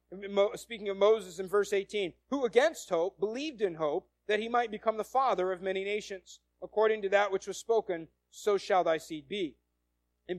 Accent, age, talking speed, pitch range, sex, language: American, 40-59, 190 wpm, 180-255 Hz, male, English